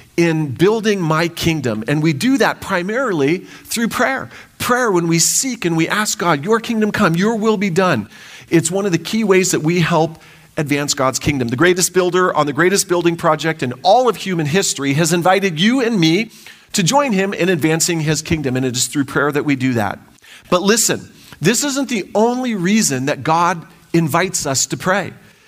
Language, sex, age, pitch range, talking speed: English, male, 40-59, 155-205 Hz, 200 wpm